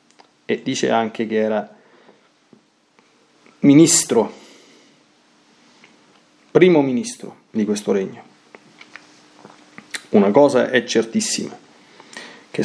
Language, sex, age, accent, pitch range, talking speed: Italian, male, 40-59, native, 105-155 Hz, 75 wpm